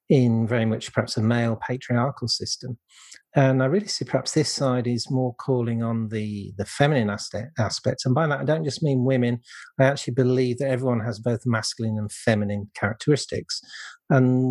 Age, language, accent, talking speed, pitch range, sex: 40-59, English, British, 180 wpm, 115-135 Hz, male